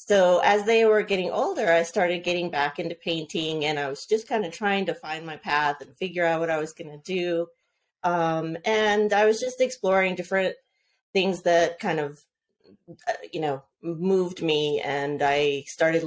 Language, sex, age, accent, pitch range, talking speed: English, female, 30-49, American, 155-190 Hz, 185 wpm